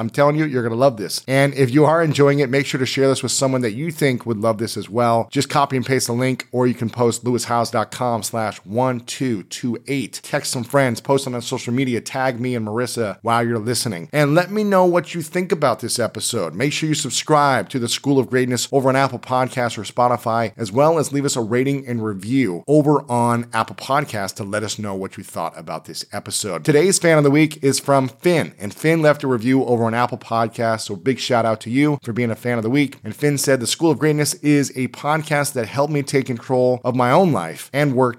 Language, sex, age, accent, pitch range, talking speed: English, male, 40-59, American, 115-145 Hz, 245 wpm